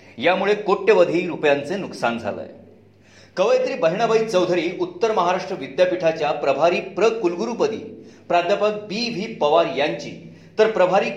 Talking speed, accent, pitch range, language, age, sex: 105 wpm, native, 155-220 Hz, Marathi, 40-59, male